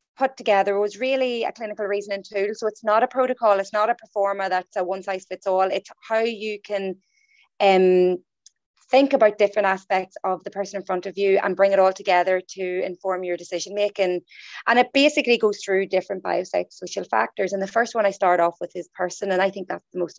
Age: 30-49